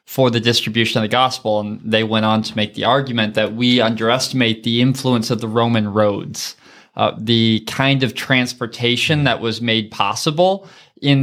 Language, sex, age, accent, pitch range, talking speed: English, male, 20-39, American, 115-150 Hz, 175 wpm